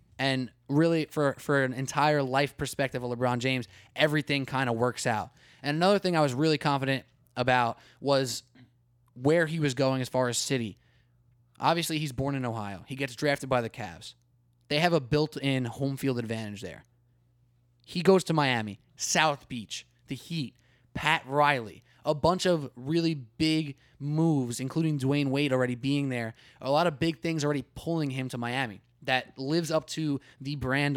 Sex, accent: male, American